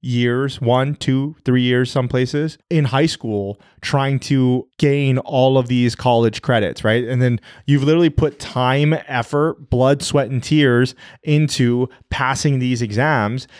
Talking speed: 150 wpm